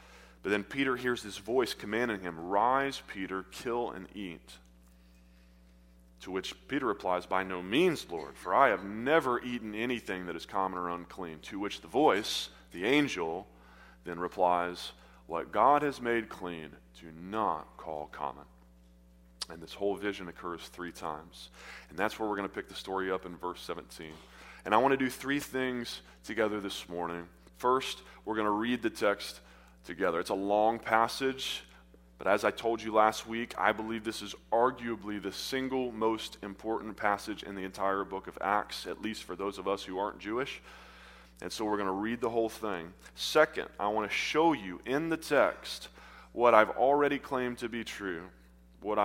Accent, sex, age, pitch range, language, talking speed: American, male, 30-49, 80-115 Hz, English, 180 wpm